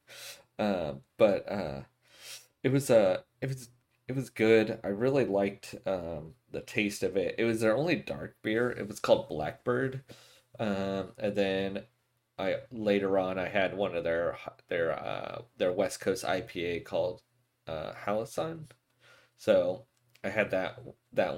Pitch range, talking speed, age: 95-125 Hz, 150 wpm, 30-49